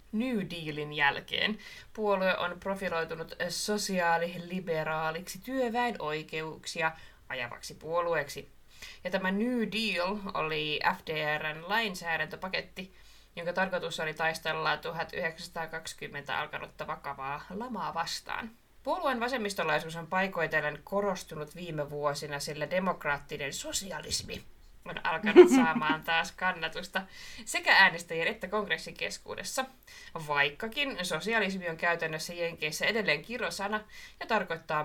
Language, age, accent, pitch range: Finnish, 20-39, native, 155-200 Hz